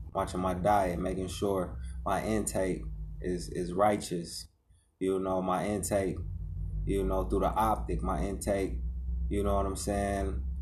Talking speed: 145 wpm